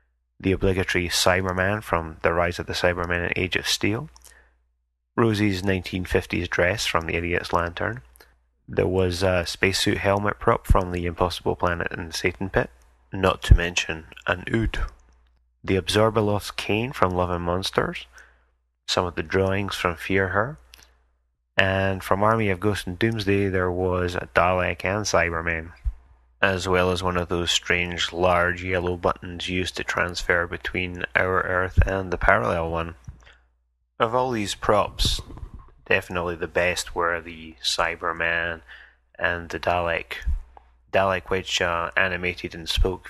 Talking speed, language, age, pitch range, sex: 145 wpm, English, 30-49, 80-95 Hz, male